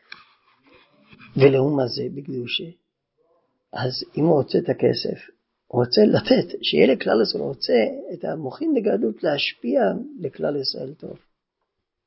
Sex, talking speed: male, 115 wpm